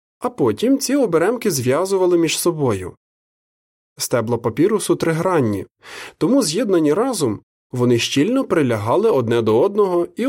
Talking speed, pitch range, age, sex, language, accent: 115 wpm, 120-175 Hz, 20-39, male, Ukrainian, native